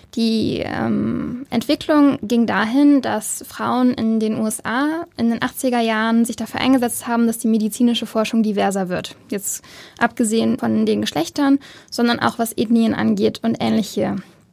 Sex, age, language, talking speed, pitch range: female, 10-29, German, 150 wpm, 230-265 Hz